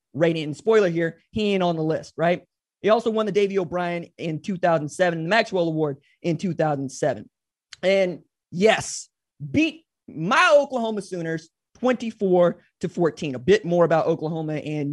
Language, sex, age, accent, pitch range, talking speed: English, male, 20-39, American, 160-210 Hz, 155 wpm